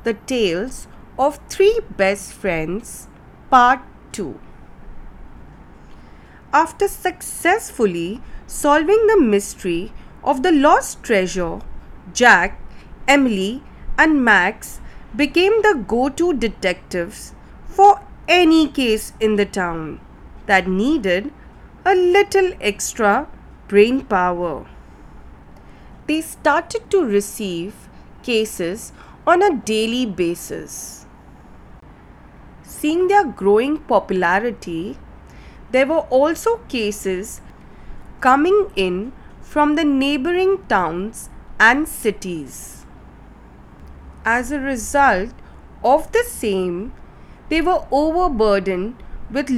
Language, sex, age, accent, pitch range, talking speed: English, female, 30-49, Indian, 195-305 Hz, 90 wpm